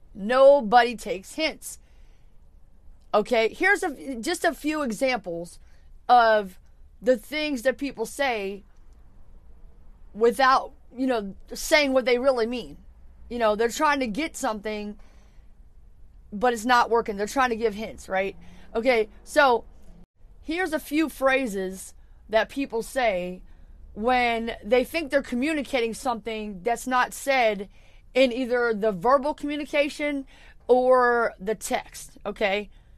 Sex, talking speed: female, 120 wpm